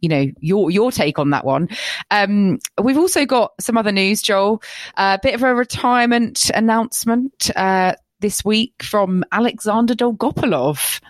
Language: English